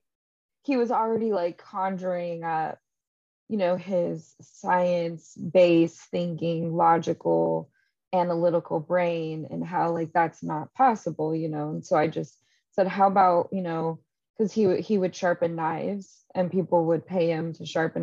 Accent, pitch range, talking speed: American, 165-205 Hz, 145 wpm